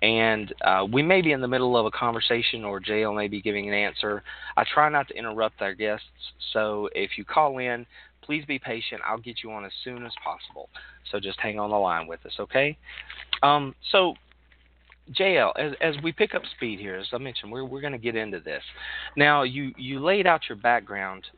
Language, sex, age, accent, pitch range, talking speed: English, male, 40-59, American, 95-130 Hz, 215 wpm